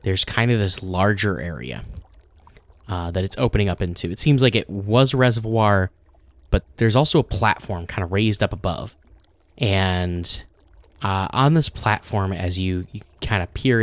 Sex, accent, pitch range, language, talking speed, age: male, American, 85-110 Hz, English, 175 wpm, 10-29